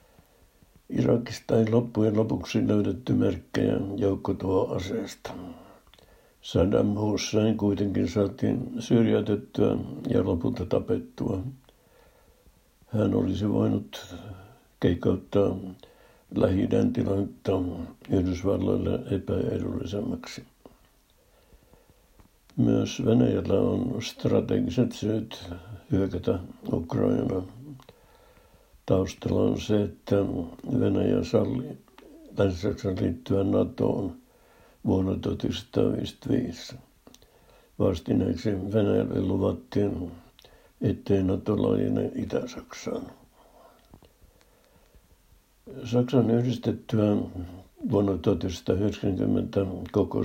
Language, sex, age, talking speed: Finnish, male, 60-79, 65 wpm